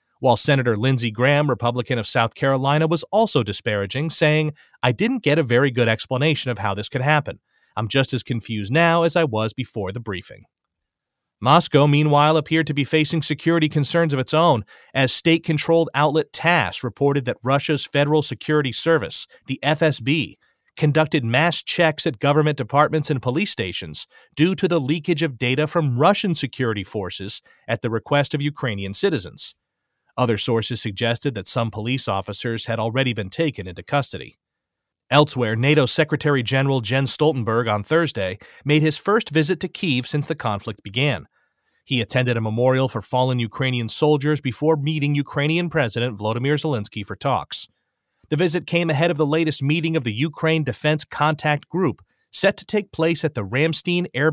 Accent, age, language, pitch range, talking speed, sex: American, 30-49, English, 120-155 Hz, 170 wpm, male